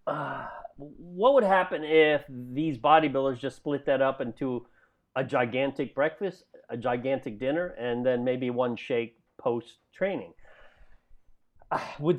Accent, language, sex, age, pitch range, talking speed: American, English, male, 40-59, 125-160 Hz, 125 wpm